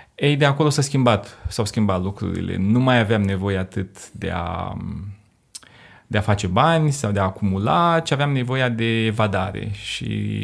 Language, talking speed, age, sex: Romanian, 165 wpm, 30-49, male